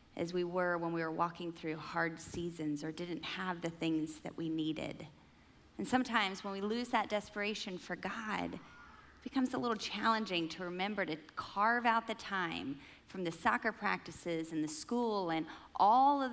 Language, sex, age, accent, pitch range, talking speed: English, female, 30-49, American, 170-210 Hz, 180 wpm